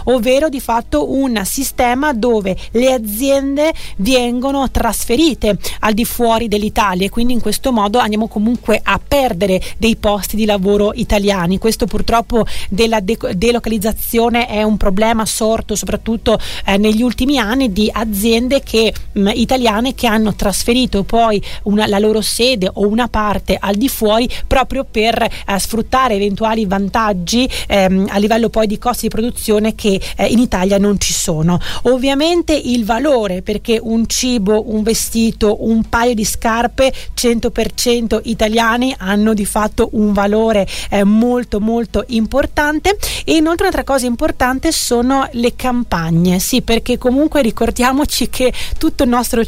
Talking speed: 140 wpm